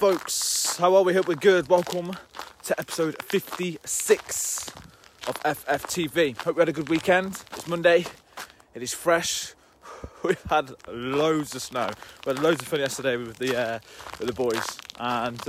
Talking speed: 165 wpm